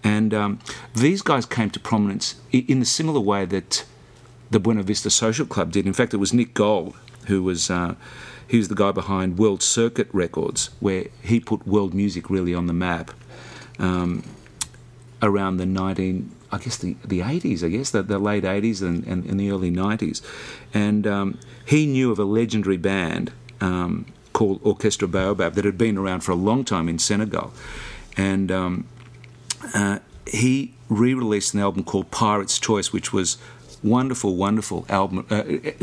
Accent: Australian